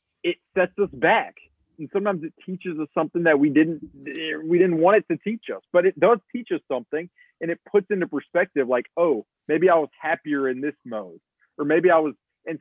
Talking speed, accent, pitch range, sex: 215 wpm, American, 140-190 Hz, male